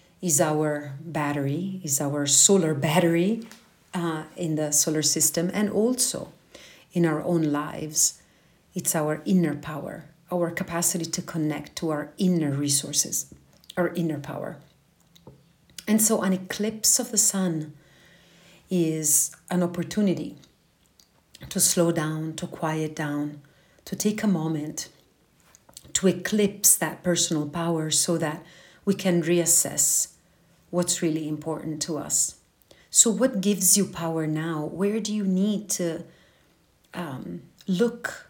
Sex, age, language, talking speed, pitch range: female, 40-59, English, 125 wpm, 150-185 Hz